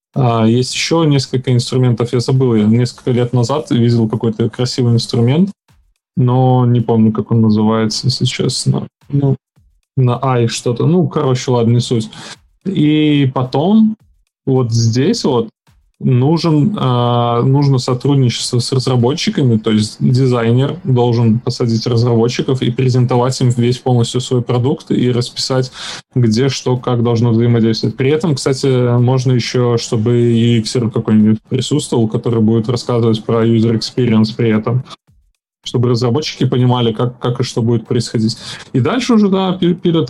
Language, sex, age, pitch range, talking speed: Russian, male, 20-39, 120-140 Hz, 135 wpm